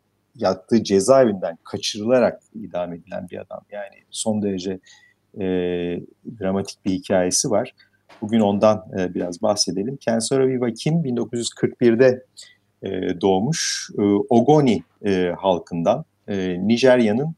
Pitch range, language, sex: 95-115 Hz, Turkish, male